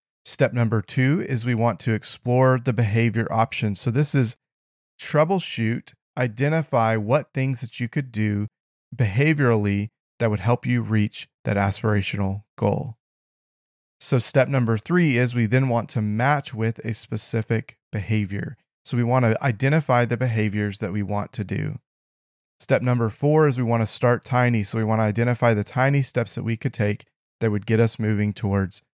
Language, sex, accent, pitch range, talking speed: English, male, American, 110-130 Hz, 175 wpm